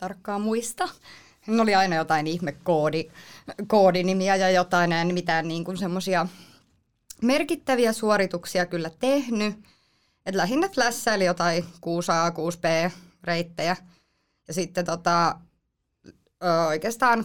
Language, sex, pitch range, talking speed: Finnish, female, 170-225 Hz, 110 wpm